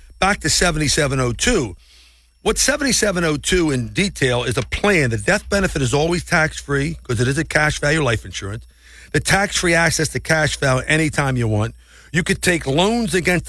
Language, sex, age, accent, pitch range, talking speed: English, male, 50-69, American, 105-160 Hz, 170 wpm